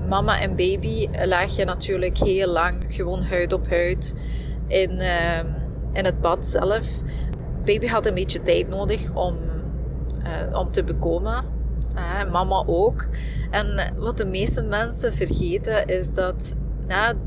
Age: 20-39